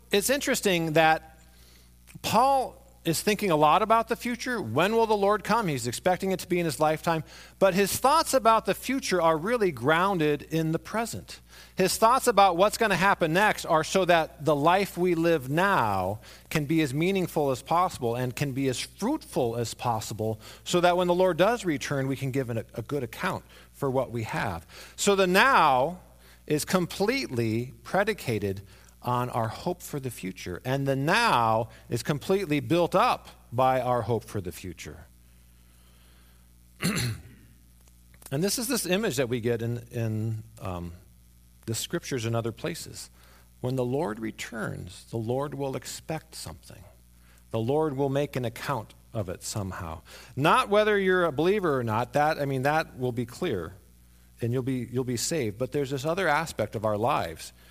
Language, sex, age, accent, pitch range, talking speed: English, male, 40-59, American, 110-180 Hz, 175 wpm